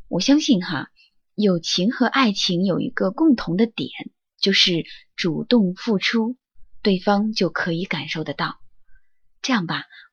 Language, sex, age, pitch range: Chinese, female, 20-39, 185-255 Hz